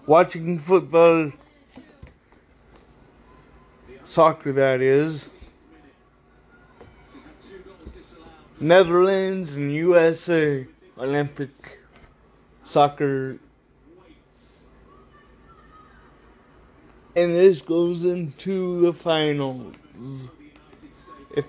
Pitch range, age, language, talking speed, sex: 145-185 Hz, 30-49, English, 45 wpm, male